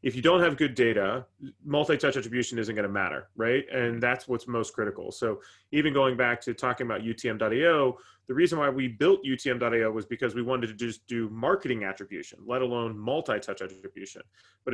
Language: English